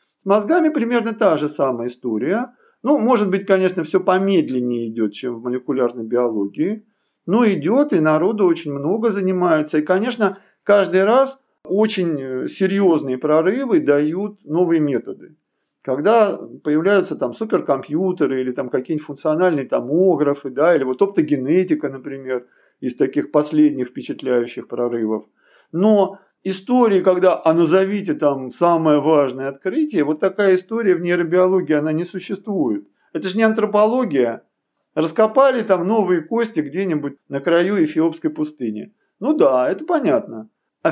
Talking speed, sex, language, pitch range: 130 wpm, male, Russian, 150-210 Hz